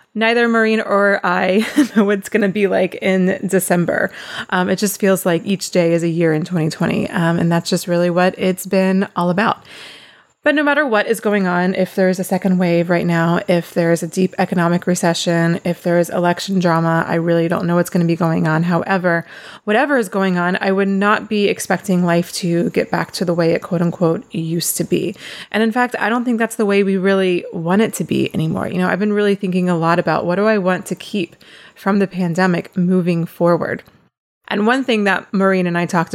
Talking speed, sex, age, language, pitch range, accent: 225 wpm, female, 20-39, English, 170-200 Hz, American